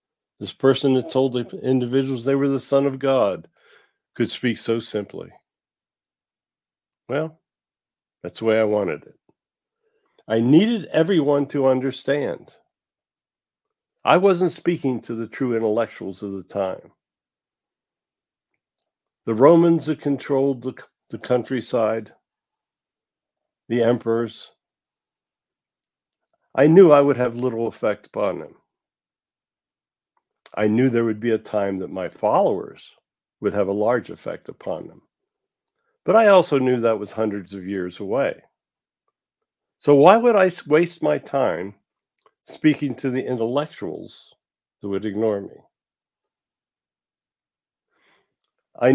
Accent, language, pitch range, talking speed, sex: American, English, 110-140 Hz, 120 wpm, male